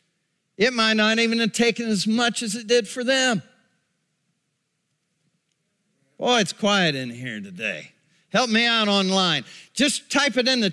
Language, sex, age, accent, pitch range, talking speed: English, male, 50-69, American, 175-240 Hz, 155 wpm